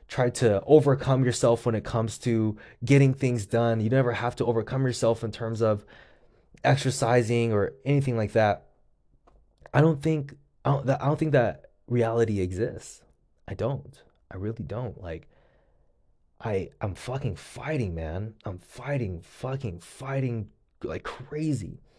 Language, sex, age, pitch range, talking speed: English, male, 20-39, 100-135 Hz, 145 wpm